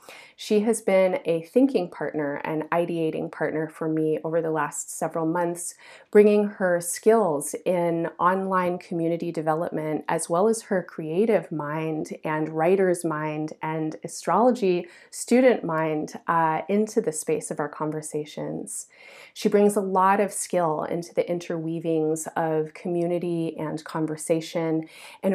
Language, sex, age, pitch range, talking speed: English, female, 30-49, 160-195 Hz, 135 wpm